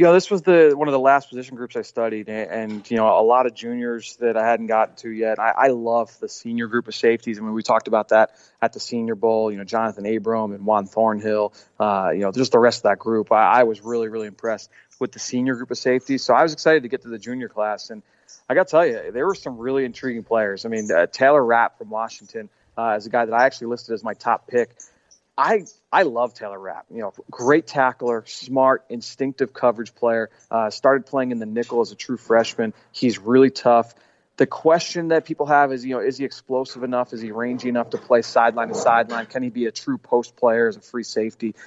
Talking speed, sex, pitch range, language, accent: 250 wpm, male, 110-130 Hz, English, American